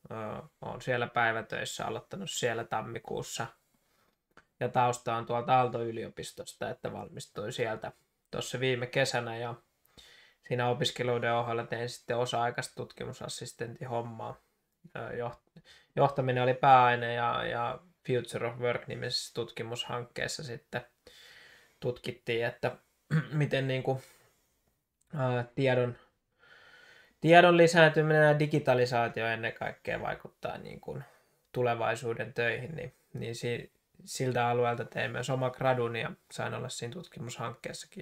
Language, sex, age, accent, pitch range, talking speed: Finnish, male, 20-39, native, 120-140 Hz, 100 wpm